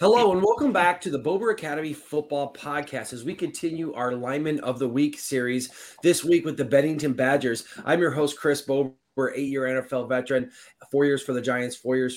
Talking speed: 195 wpm